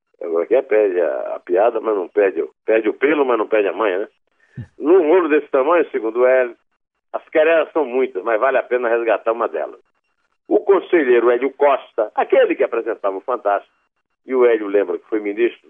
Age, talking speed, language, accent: 60-79, 205 wpm, Portuguese, Brazilian